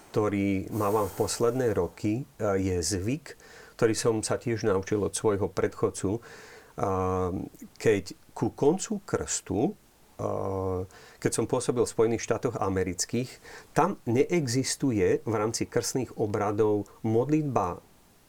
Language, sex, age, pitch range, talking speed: Slovak, male, 40-59, 100-130 Hz, 110 wpm